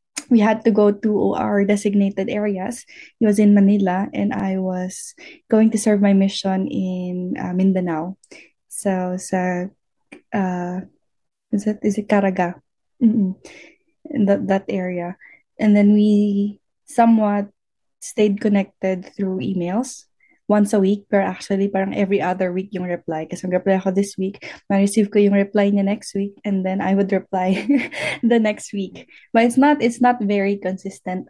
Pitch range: 190-220 Hz